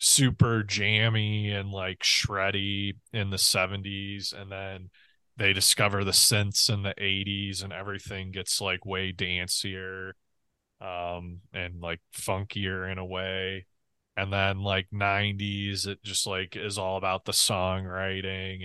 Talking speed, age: 135 wpm, 20-39